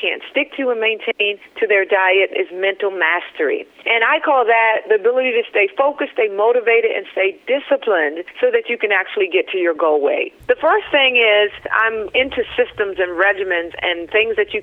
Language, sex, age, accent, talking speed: English, female, 40-59, American, 195 wpm